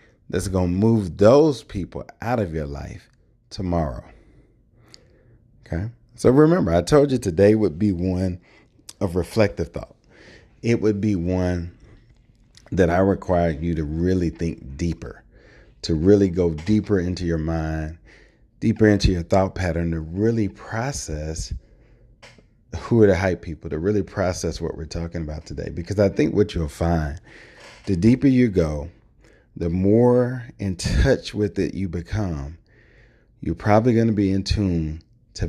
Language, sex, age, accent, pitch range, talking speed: English, male, 30-49, American, 85-110 Hz, 150 wpm